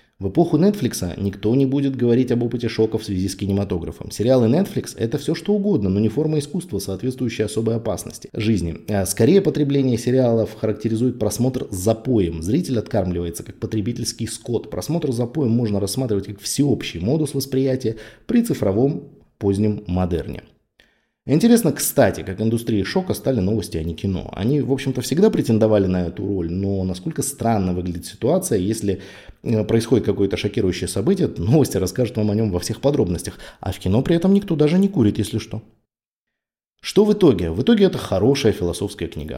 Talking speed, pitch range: 165 wpm, 100-135 Hz